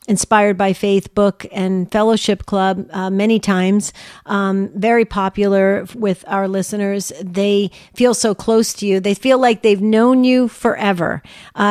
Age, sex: 40-59, female